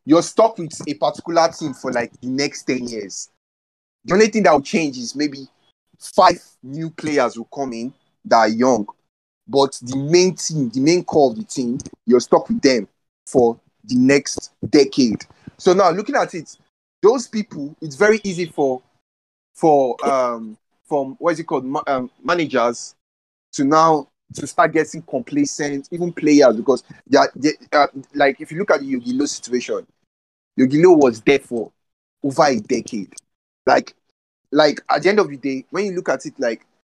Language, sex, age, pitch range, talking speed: English, male, 30-49, 130-185 Hz, 180 wpm